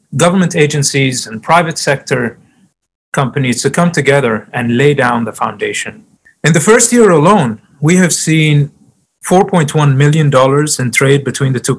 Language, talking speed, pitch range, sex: English, 150 wpm, 125-155 Hz, male